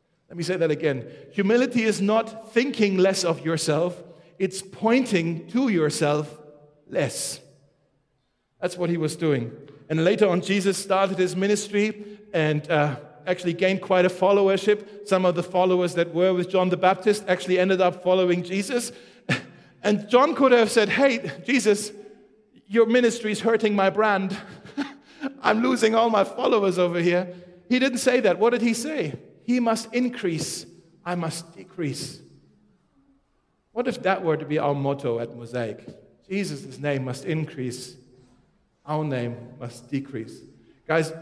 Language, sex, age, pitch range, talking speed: German, male, 40-59, 145-200 Hz, 150 wpm